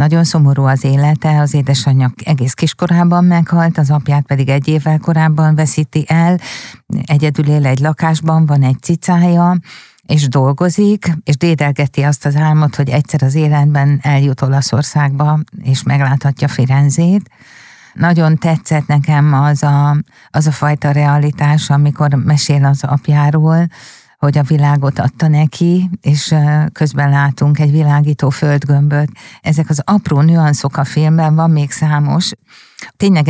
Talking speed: 135 wpm